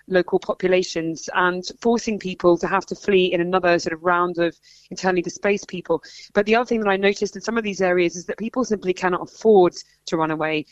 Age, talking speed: 20-39, 220 wpm